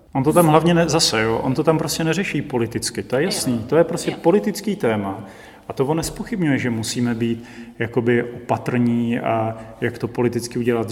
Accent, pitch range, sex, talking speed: native, 115-135 Hz, male, 190 wpm